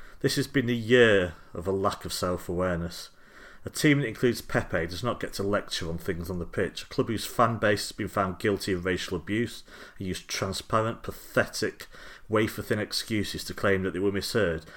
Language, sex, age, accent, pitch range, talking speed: English, male, 40-59, British, 85-105 Hz, 200 wpm